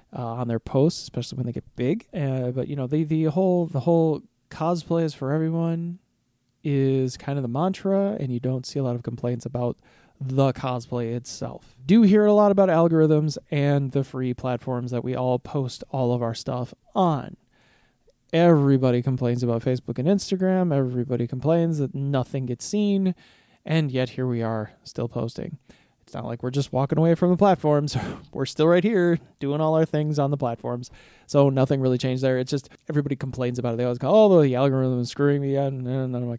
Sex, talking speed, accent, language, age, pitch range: male, 200 wpm, American, English, 20-39, 125-155 Hz